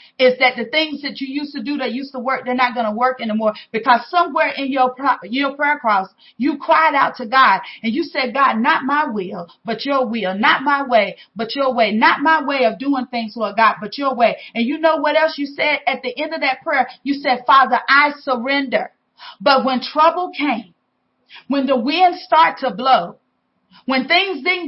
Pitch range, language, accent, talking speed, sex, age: 245-310 Hz, English, American, 215 wpm, female, 40-59